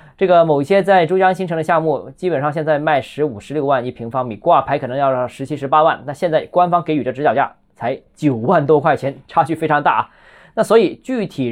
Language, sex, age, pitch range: Chinese, male, 20-39, 135-180 Hz